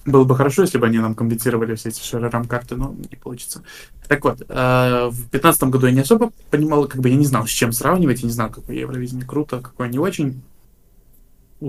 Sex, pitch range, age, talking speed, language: male, 120-145 Hz, 20-39, 215 wpm, Russian